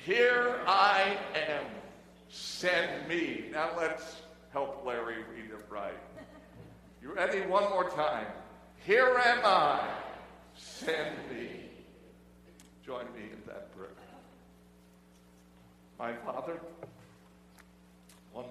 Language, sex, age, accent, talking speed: English, male, 60-79, American, 95 wpm